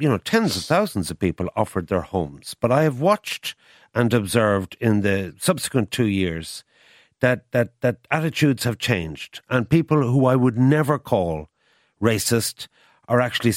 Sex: male